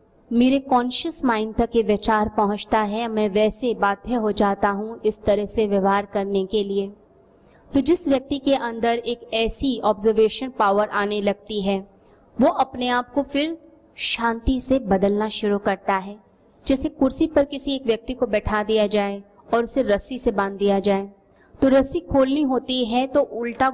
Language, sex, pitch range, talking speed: Hindi, female, 205-250 Hz, 170 wpm